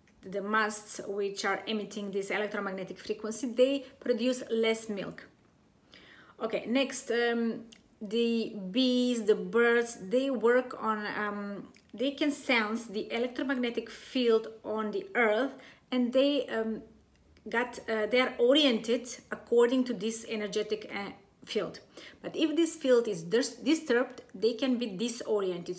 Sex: female